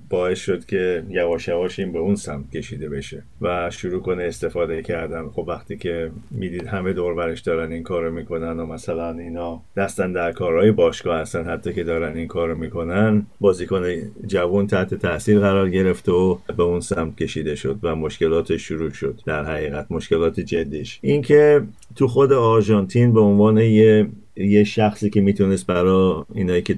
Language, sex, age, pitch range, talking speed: Persian, male, 50-69, 85-95 Hz, 170 wpm